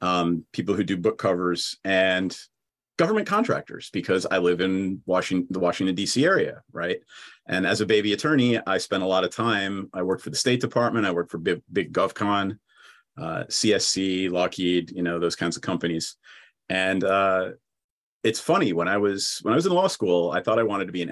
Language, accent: English, American